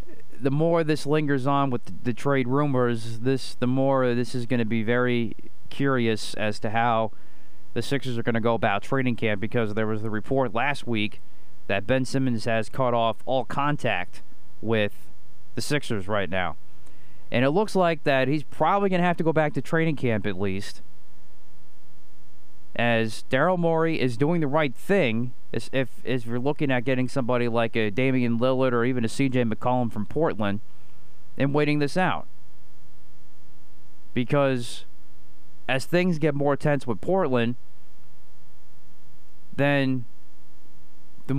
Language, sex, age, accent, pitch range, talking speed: English, male, 30-49, American, 105-140 Hz, 160 wpm